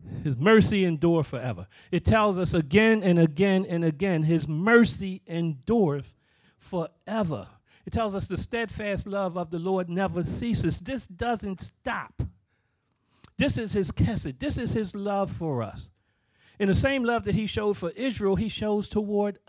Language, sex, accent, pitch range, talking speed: English, male, American, 130-200 Hz, 160 wpm